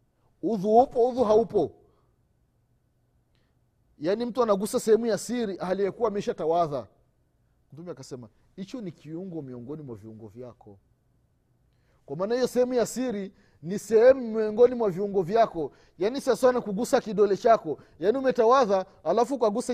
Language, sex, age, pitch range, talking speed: Swahili, male, 30-49, 145-240 Hz, 125 wpm